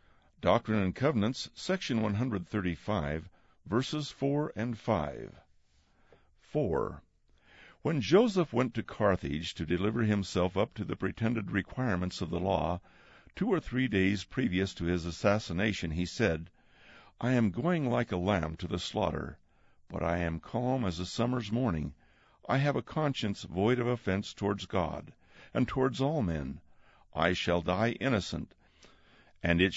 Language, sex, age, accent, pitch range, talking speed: English, male, 60-79, American, 85-120 Hz, 145 wpm